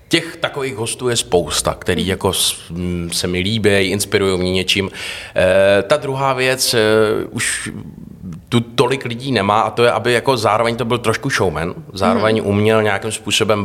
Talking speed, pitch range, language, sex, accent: 165 wpm, 90-115 Hz, Czech, male, native